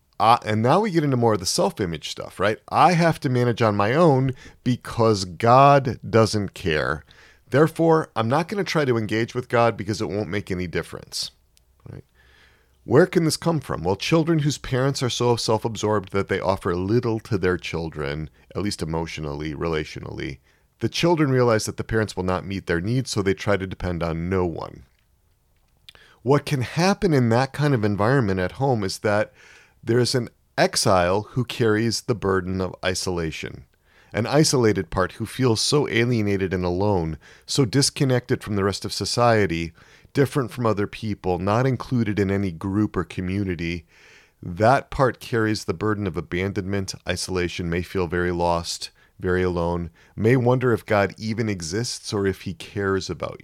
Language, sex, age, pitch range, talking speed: English, male, 40-59, 90-125 Hz, 175 wpm